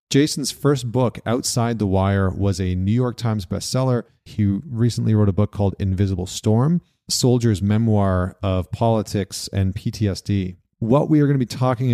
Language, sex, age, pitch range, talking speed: English, male, 30-49, 100-115 Hz, 165 wpm